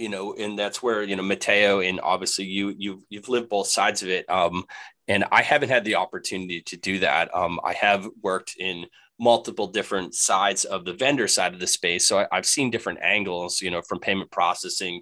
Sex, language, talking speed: male, English, 215 wpm